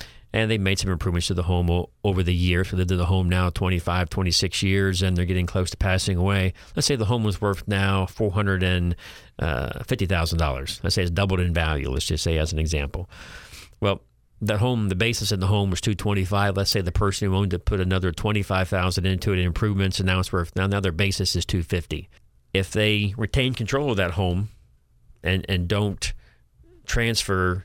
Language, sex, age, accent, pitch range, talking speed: English, male, 40-59, American, 90-105 Hz, 205 wpm